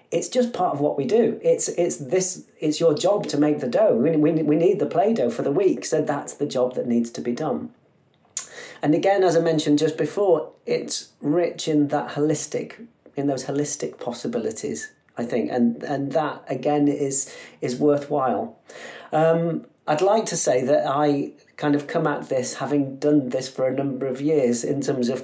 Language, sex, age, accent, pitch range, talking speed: English, male, 40-59, British, 130-160 Hz, 195 wpm